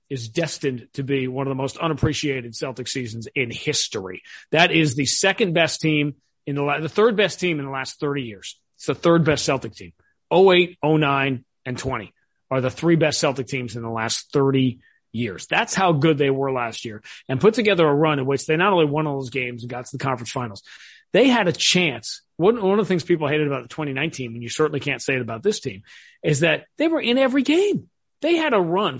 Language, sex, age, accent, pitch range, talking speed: English, male, 40-59, American, 135-170 Hz, 225 wpm